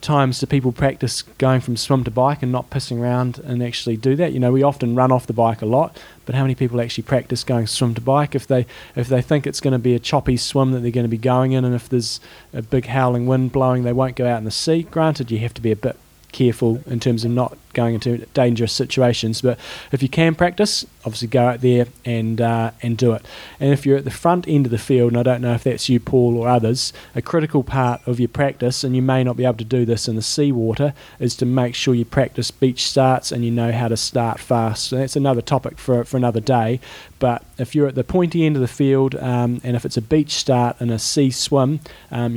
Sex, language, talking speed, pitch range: male, English, 260 wpm, 120-135 Hz